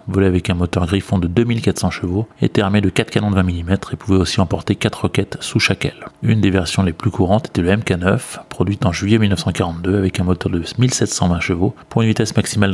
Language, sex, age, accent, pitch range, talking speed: French, male, 30-49, French, 90-110 Hz, 225 wpm